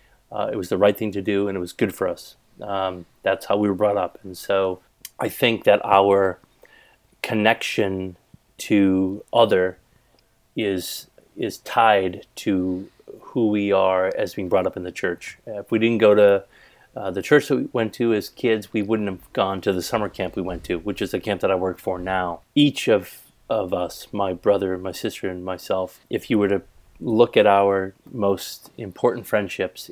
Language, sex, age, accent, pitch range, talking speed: English, male, 30-49, American, 95-105 Hz, 195 wpm